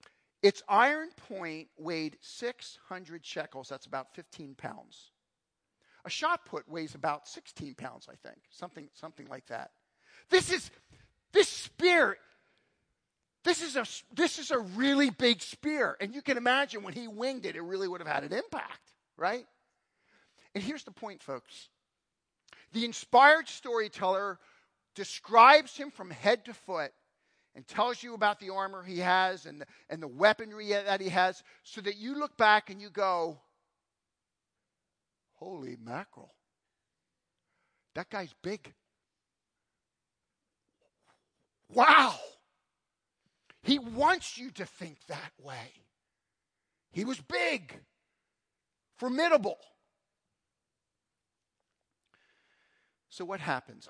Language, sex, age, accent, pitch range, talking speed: English, male, 40-59, American, 180-260 Hz, 120 wpm